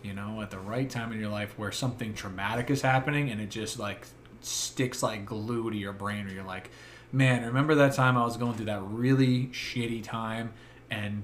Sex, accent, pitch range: male, American, 110-130 Hz